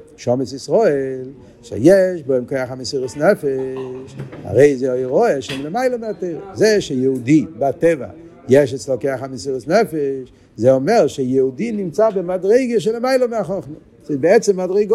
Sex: male